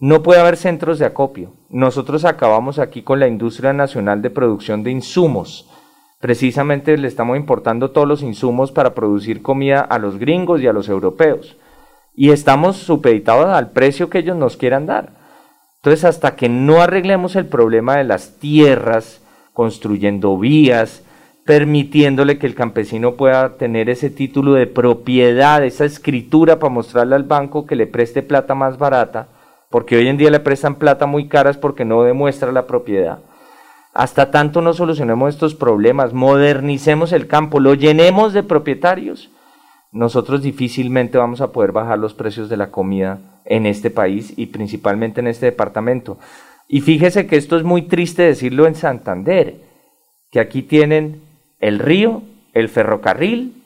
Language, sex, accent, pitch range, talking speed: Spanish, male, Colombian, 120-150 Hz, 160 wpm